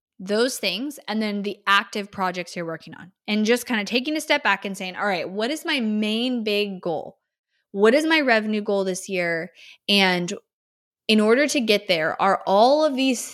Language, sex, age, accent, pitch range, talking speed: English, female, 20-39, American, 190-250 Hz, 205 wpm